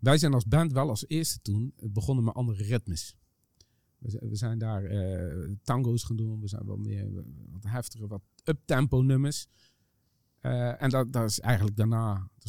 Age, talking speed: 50-69, 175 wpm